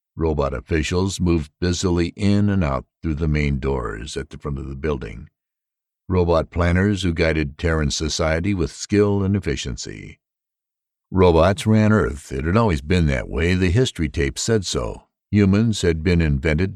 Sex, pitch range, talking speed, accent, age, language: male, 70-95 Hz, 160 wpm, American, 60-79, English